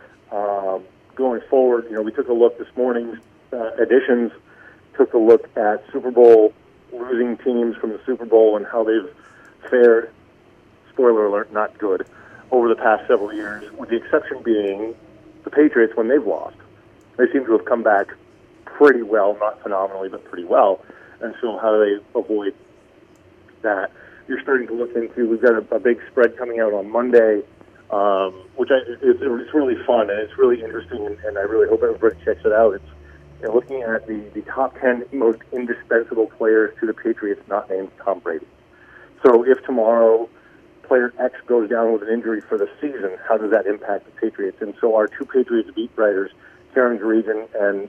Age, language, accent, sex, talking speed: 40-59, English, American, male, 185 wpm